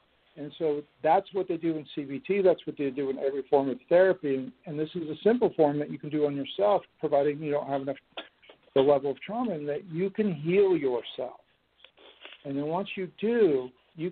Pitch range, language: 140-170 Hz, English